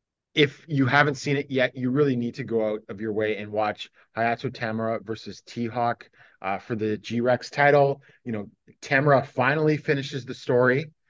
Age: 30-49